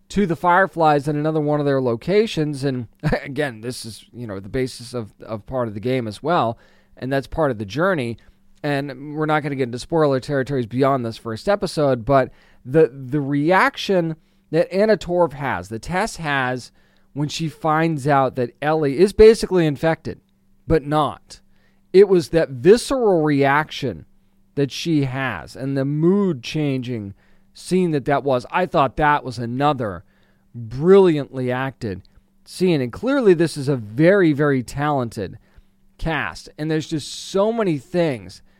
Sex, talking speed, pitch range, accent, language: male, 165 wpm, 125-160 Hz, American, English